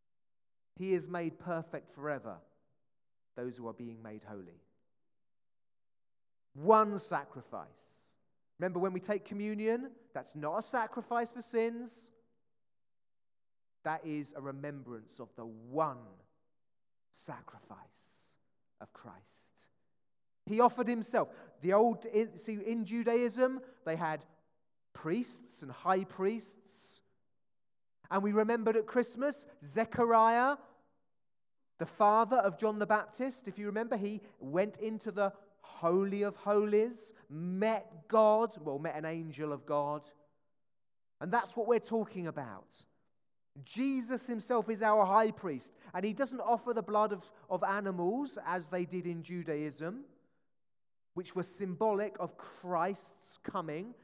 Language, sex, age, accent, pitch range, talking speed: English, male, 30-49, British, 150-220 Hz, 120 wpm